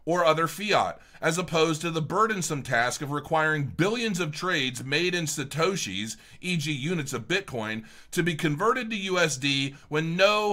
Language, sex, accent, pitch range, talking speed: English, male, American, 125-180 Hz, 160 wpm